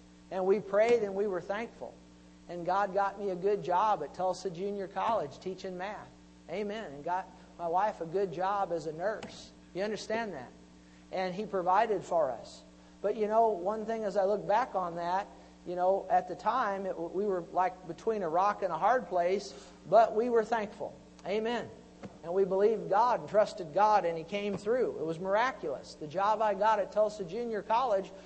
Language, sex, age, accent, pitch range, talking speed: English, male, 50-69, American, 175-210 Hz, 195 wpm